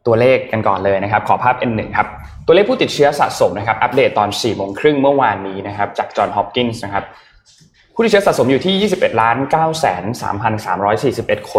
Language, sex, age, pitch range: Thai, male, 20-39, 100-135 Hz